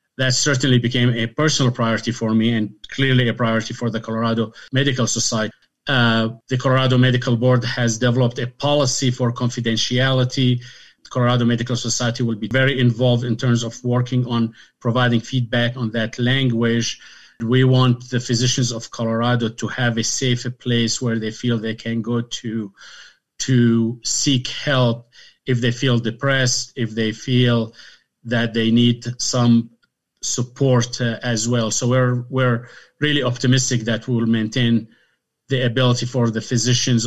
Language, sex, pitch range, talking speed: English, male, 115-130 Hz, 155 wpm